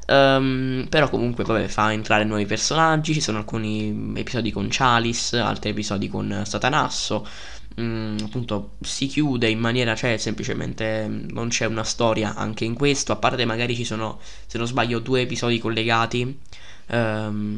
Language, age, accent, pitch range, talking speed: Italian, 10-29, native, 105-130 Hz, 160 wpm